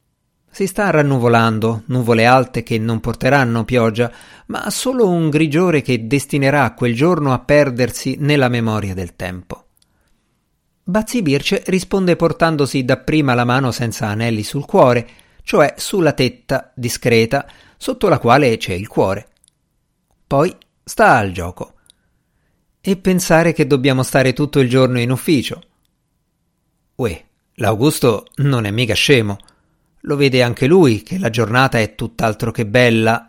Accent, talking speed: native, 130 wpm